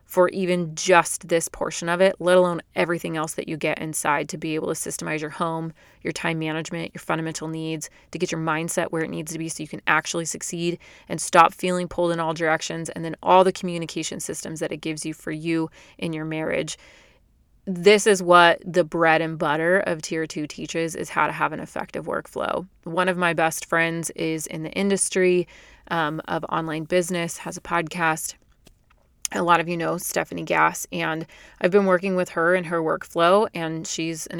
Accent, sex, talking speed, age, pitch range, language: American, female, 205 wpm, 30-49, 160-180 Hz, English